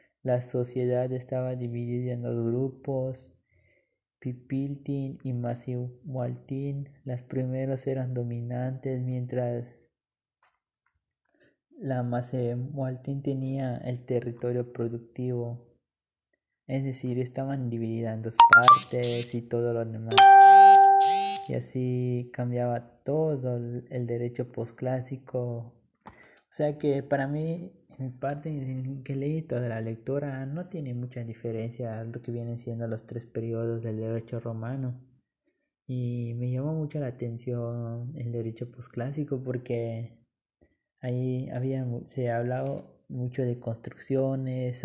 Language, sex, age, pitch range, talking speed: Spanish, male, 20-39, 120-135 Hz, 115 wpm